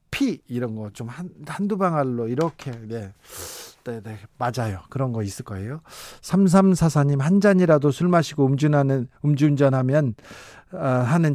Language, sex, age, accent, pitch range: Korean, male, 40-59, native, 125-175 Hz